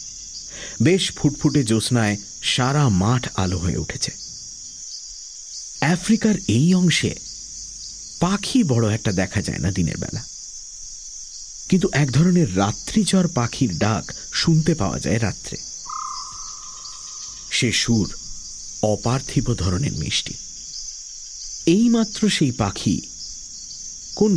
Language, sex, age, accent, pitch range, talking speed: English, male, 50-69, Indian, 105-155 Hz, 90 wpm